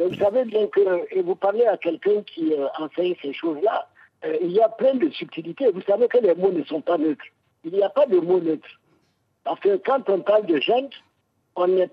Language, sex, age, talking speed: French, male, 50-69, 230 wpm